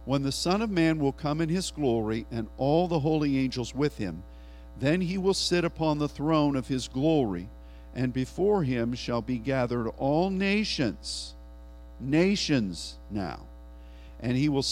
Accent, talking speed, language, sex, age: American, 165 wpm, English, male, 50-69